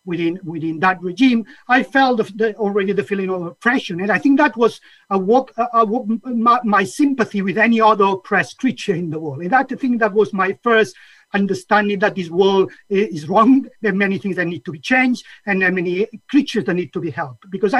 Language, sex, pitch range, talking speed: English, male, 185-235 Hz, 225 wpm